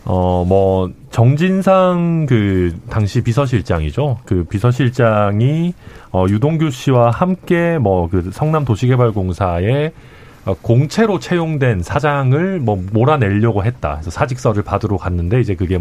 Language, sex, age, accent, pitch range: Korean, male, 40-59, native, 100-140 Hz